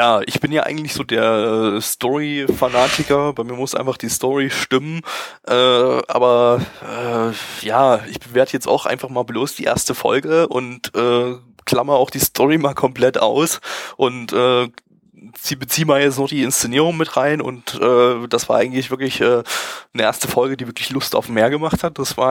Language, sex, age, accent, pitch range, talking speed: German, male, 20-39, German, 120-140 Hz, 185 wpm